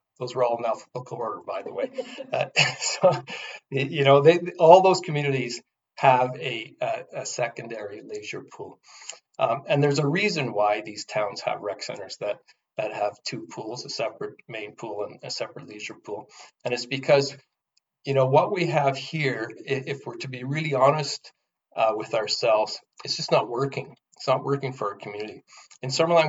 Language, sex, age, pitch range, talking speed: English, male, 40-59, 125-155 Hz, 175 wpm